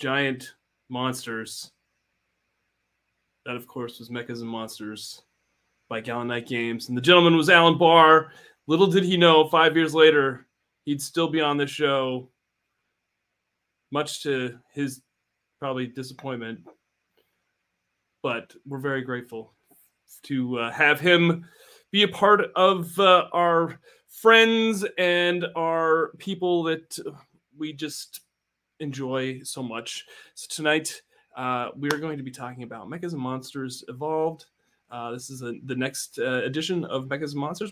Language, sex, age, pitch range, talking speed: English, male, 30-49, 125-165 Hz, 140 wpm